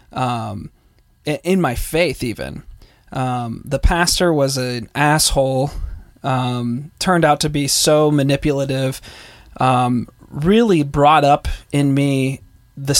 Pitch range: 120-150 Hz